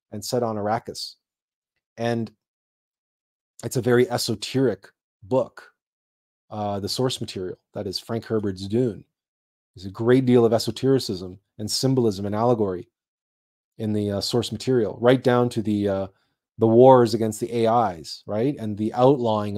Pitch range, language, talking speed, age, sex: 105-130 Hz, English, 145 wpm, 30-49, male